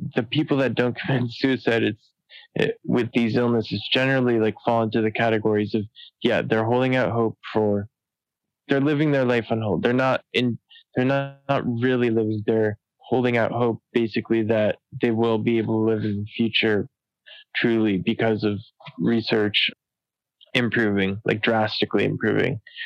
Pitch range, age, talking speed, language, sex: 110-125 Hz, 20-39, 160 wpm, English, male